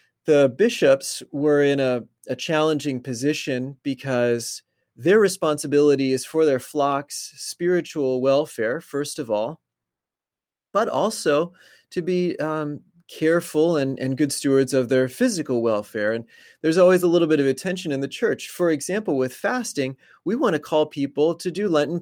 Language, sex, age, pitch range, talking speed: English, male, 30-49, 125-155 Hz, 155 wpm